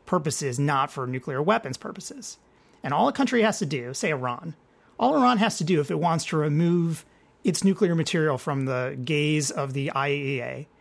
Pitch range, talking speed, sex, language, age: 140-185 Hz, 190 wpm, male, English, 30-49